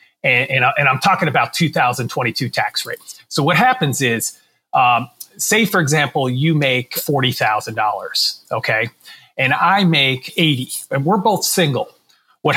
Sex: male